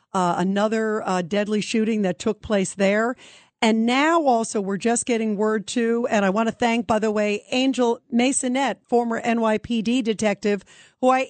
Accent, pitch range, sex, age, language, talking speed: American, 195-230 Hz, female, 50-69, English, 170 wpm